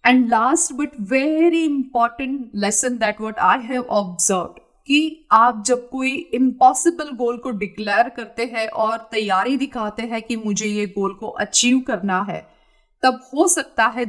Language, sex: Hindi, female